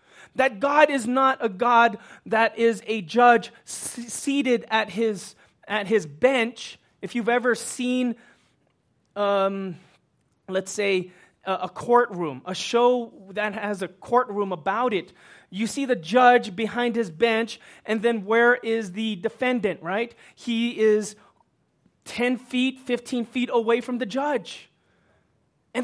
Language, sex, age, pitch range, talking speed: English, male, 30-49, 220-300 Hz, 135 wpm